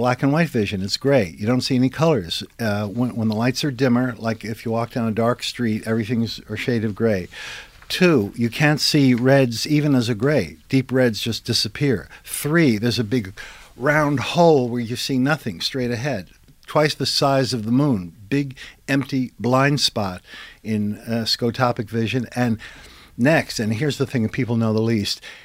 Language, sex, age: English, male, 50-69